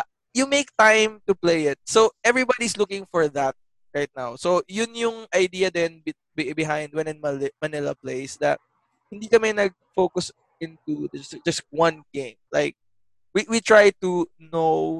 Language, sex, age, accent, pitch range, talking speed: English, male, 20-39, Filipino, 155-220 Hz, 150 wpm